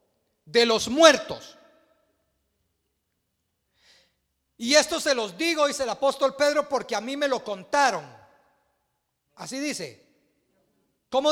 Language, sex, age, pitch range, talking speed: Spanish, male, 50-69, 165-265 Hz, 110 wpm